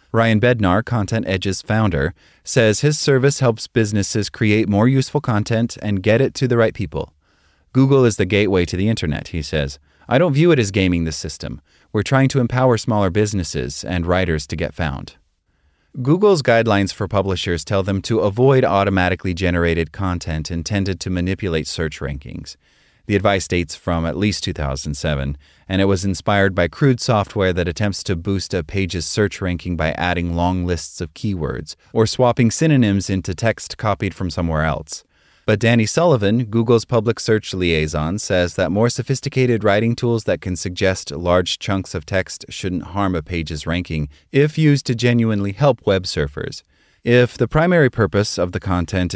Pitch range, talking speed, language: 85-115 Hz, 170 wpm, English